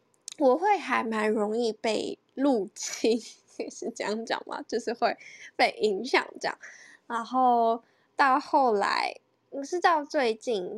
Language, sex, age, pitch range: Chinese, female, 10-29, 210-290 Hz